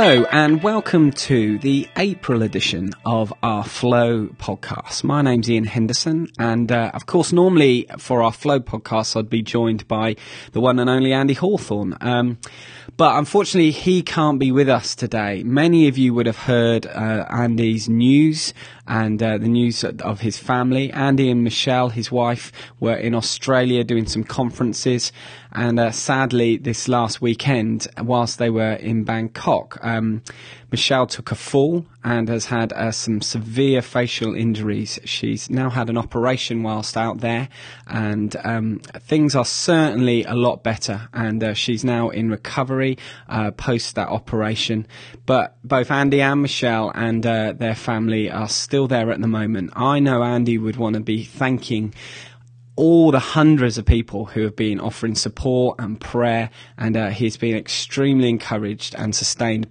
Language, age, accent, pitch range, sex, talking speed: English, 20-39, British, 110-130 Hz, male, 165 wpm